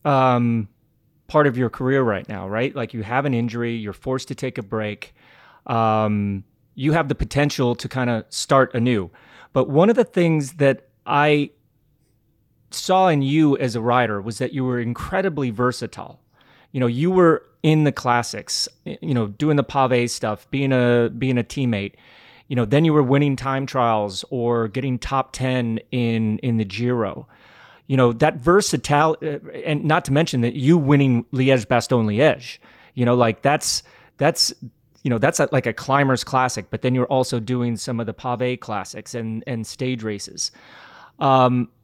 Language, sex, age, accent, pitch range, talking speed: English, male, 30-49, American, 120-140 Hz, 175 wpm